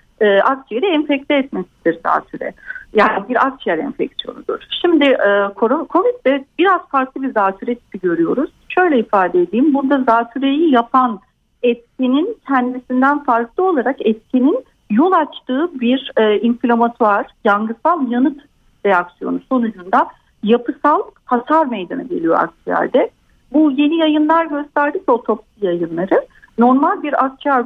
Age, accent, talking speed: 60-79, native, 105 wpm